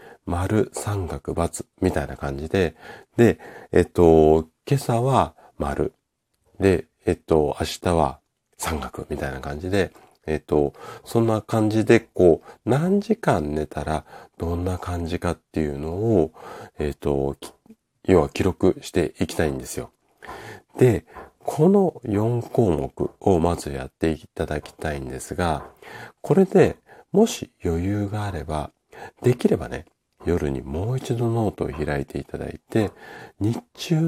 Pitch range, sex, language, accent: 75-110 Hz, male, Japanese, native